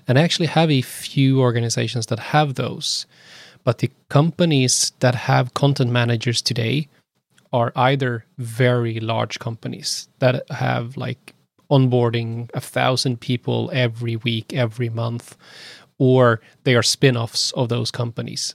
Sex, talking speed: male, 135 wpm